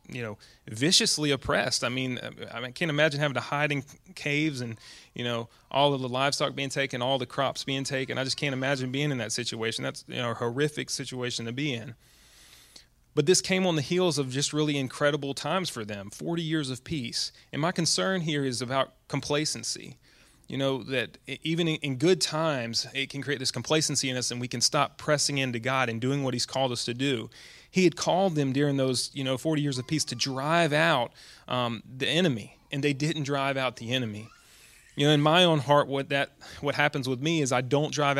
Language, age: English, 30-49